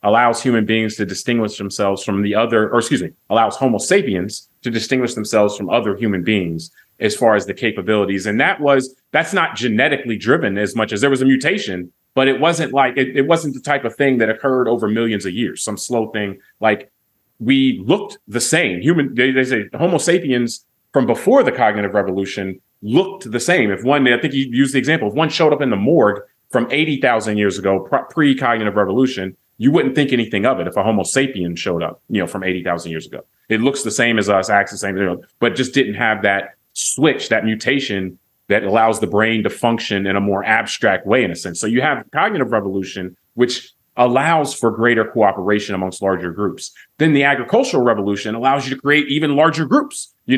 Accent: American